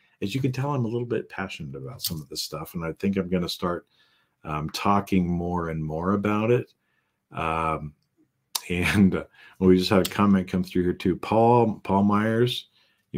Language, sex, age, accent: English, male, 50-69, American